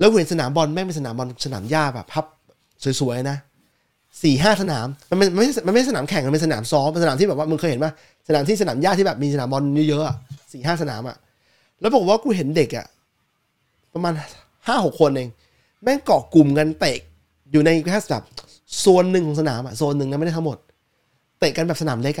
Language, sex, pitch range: Thai, male, 130-175 Hz